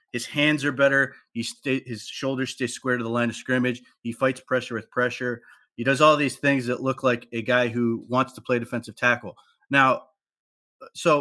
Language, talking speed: English, 205 wpm